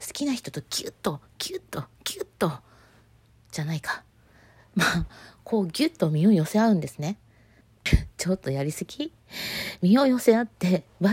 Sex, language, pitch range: female, Japanese, 150-225 Hz